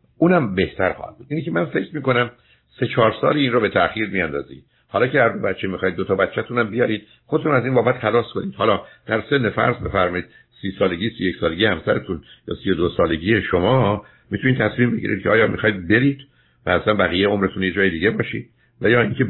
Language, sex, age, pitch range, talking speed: Persian, male, 60-79, 90-120 Hz, 200 wpm